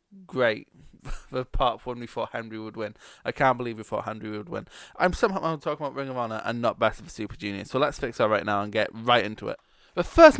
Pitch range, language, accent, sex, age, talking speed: 110-150 Hz, English, British, male, 20-39, 255 wpm